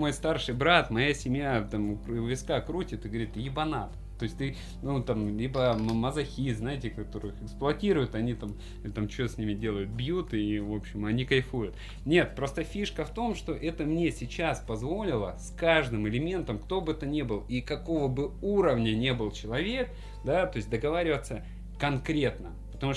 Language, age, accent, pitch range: Russian, 20-39, native, 105-135 Hz